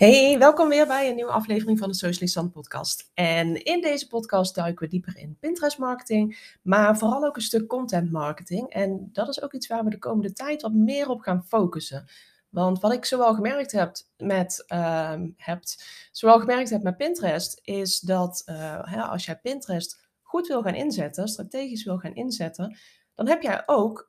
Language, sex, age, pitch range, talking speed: Dutch, female, 20-39, 175-230 Hz, 185 wpm